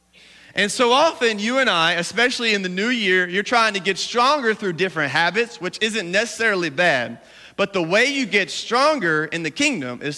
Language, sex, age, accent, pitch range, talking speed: English, male, 30-49, American, 155-230 Hz, 195 wpm